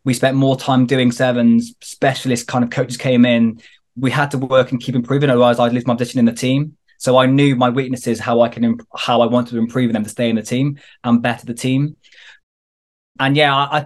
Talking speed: 230 wpm